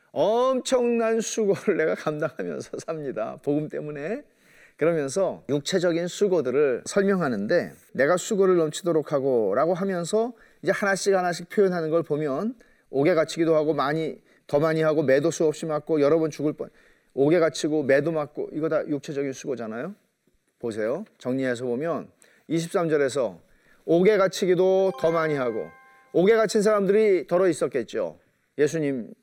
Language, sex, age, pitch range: Korean, male, 40-59, 155-225 Hz